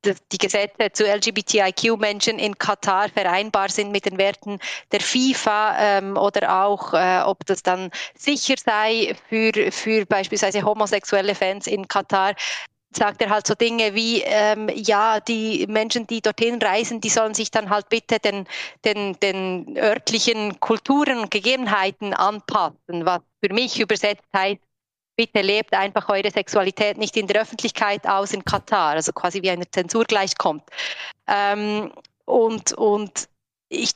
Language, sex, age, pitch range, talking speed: German, female, 30-49, 200-225 Hz, 150 wpm